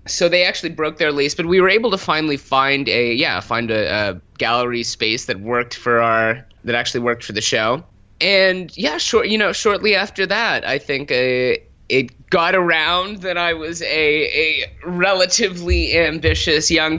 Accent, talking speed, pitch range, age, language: American, 185 wpm, 120-165 Hz, 30-49, English